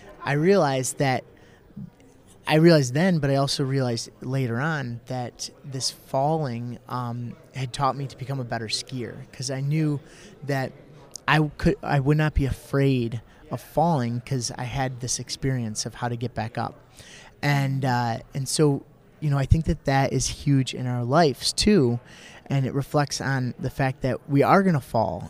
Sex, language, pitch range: male, English, 120-145 Hz